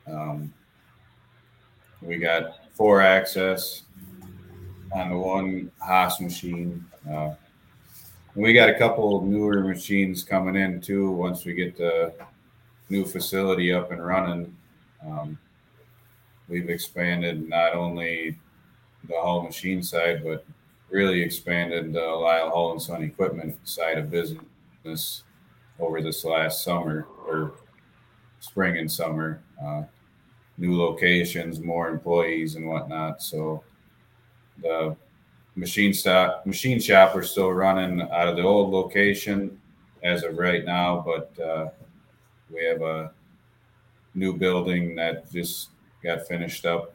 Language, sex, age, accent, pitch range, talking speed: English, male, 30-49, American, 80-95 Hz, 125 wpm